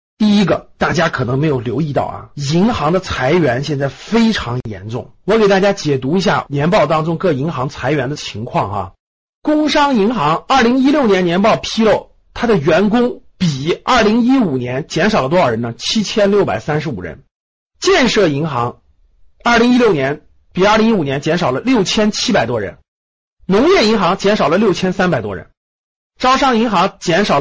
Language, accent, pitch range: Chinese, native, 155-225 Hz